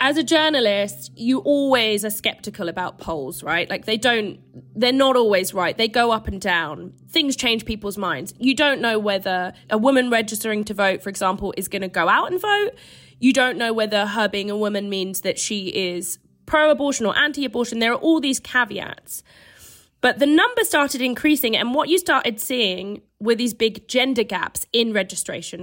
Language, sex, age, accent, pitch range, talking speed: English, female, 20-39, British, 190-255 Hz, 190 wpm